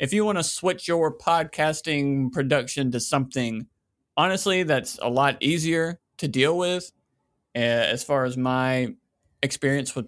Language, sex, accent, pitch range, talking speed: English, male, American, 115-145 Hz, 150 wpm